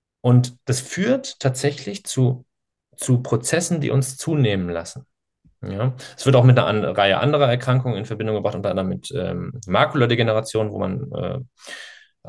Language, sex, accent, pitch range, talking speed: German, male, German, 105-135 Hz, 150 wpm